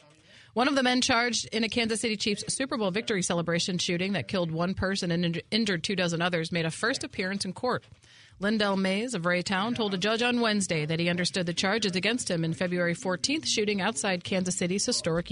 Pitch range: 170-220 Hz